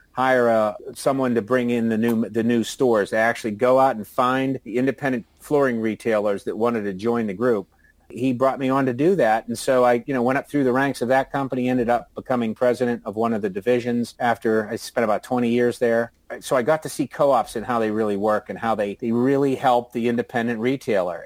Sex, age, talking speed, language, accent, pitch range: male, 40-59, 235 wpm, English, American, 115-135 Hz